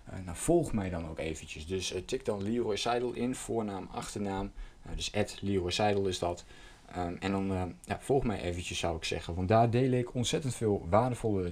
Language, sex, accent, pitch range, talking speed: Dutch, male, Dutch, 90-110 Hz, 205 wpm